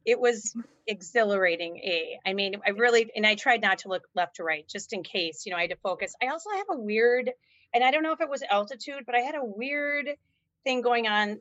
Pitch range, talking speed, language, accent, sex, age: 190-240 Hz, 250 wpm, English, American, female, 30-49